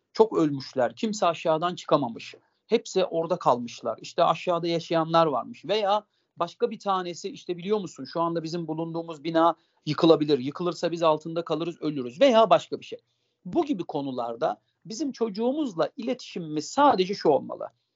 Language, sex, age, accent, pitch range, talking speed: Turkish, male, 50-69, native, 165-250 Hz, 145 wpm